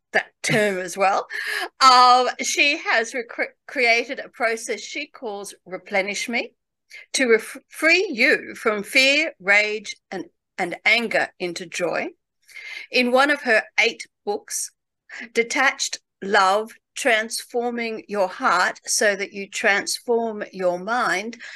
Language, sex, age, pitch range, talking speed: English, female, 60-79, 190-265 Hz, 115 wpm